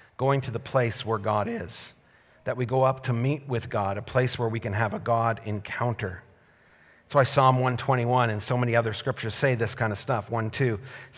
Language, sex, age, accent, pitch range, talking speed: English, male, 40-59, American, 115-135 Hz, 210 wpm